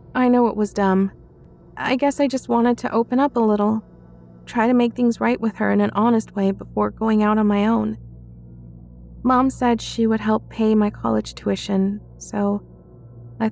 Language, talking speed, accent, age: English, 190 wpm, American, 20-39